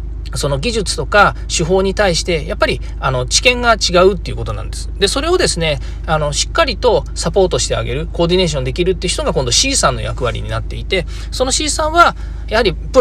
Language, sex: Japanese, male